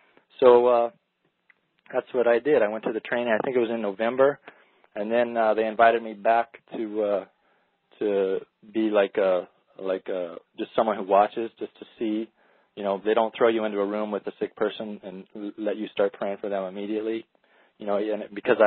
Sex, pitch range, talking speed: male, 100-115 Hz, 205 wpm